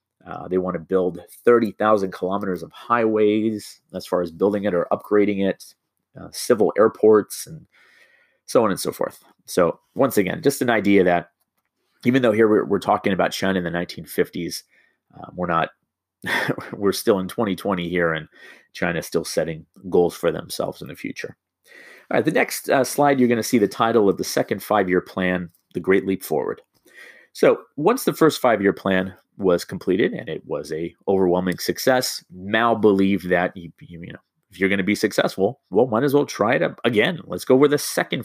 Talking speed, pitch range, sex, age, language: 190 wpm, 90-115 Hz, male, 30-49, English